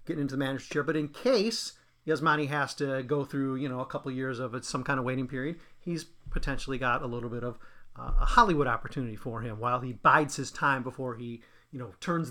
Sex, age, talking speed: male, 40-59, 240 wpm